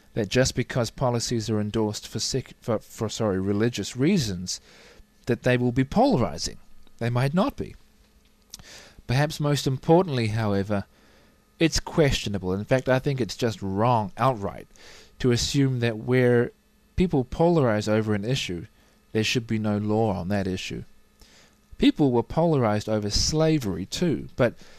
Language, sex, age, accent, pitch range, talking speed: English, male, 40-59, Australian, 105-135 Hz, 145 wpm